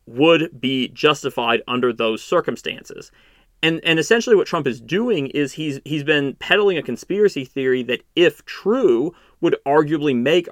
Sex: male